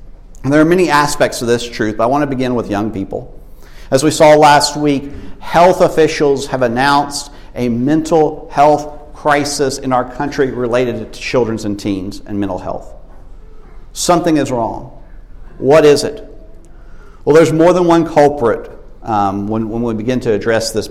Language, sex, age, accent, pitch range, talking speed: English, male, 50-69, American, 115-150 Hz, 170 wpm